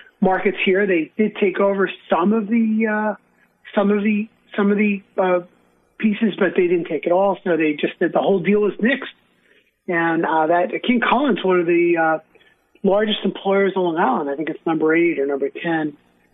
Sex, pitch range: male, 165-200 Hz